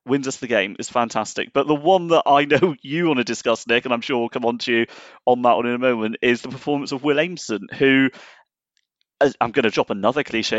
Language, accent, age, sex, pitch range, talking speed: English, British, 30-49, male, 130-165 Hz, 255 wpm